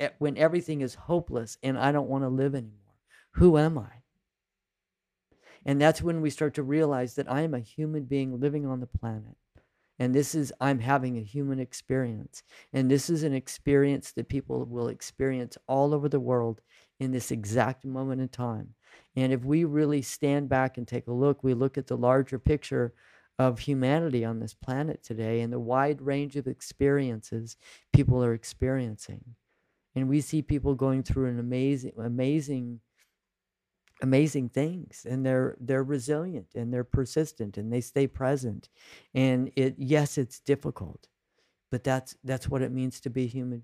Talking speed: 175 wpm